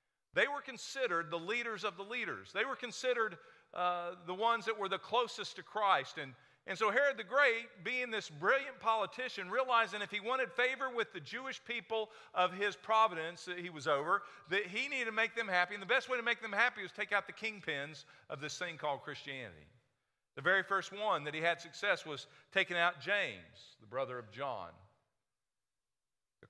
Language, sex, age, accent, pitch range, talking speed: English, male, 50-69, American, 170-235 Hz, 200 wpm